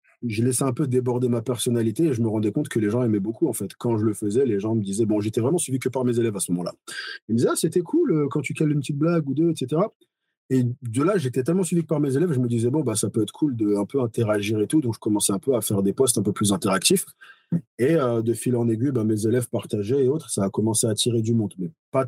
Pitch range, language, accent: 110-130 Hz, French, French